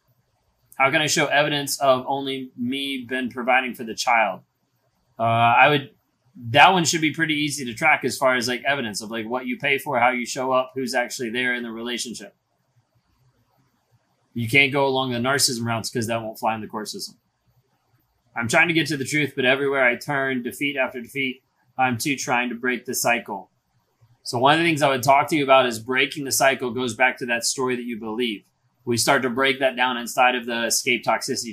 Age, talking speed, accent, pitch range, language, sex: 30-49, 220 wpm, American, 120-140 Hz, English, male